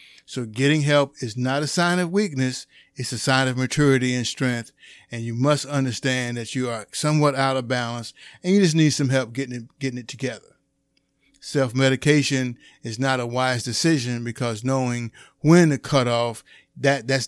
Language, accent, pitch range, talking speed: English, American, 120-140 Hz, 175 wpm